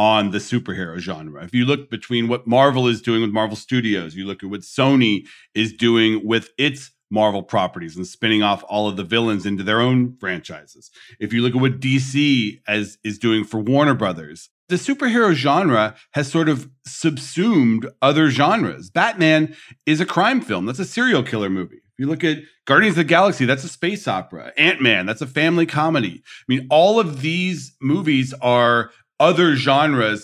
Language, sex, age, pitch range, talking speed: English, male, 40-59, 110-160 Hz, 185 wpm